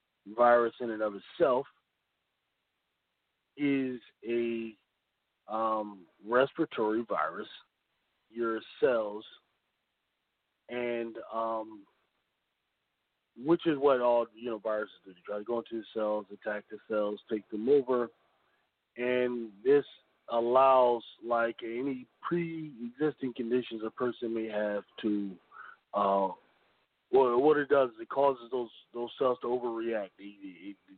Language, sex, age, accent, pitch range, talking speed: English, male, 40-59, American, 110-125 Hz, 120 wpm